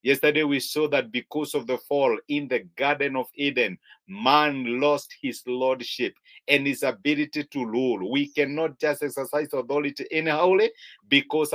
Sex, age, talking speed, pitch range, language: male, 50-69, 155 wpm, 140-165 Hz, English